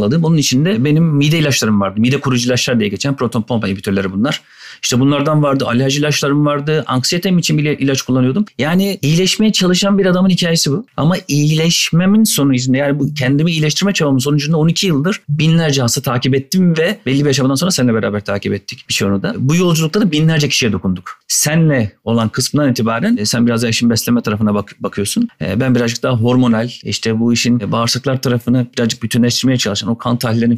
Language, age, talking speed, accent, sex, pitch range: Turkish, 40-59, 175 wpm, native, male, 120-155 Hz